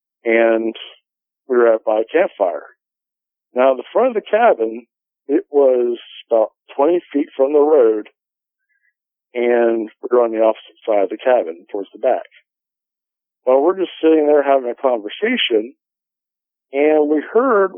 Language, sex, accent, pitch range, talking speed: English, male, American, 115-155 Hz, 150 wpm